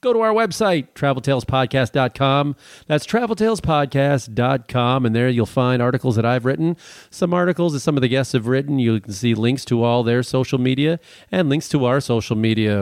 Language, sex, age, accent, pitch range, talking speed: English, male, 40-59, American, 120-165 Hz, 185 wpm